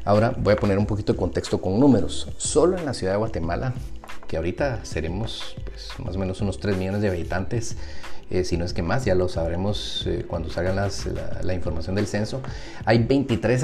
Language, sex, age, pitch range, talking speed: Spanish, male, 30-49, 95-115 Hz, 205 wpm